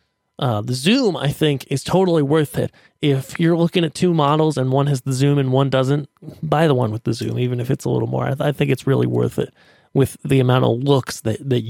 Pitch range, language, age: 130-160 Hz, English, 30-49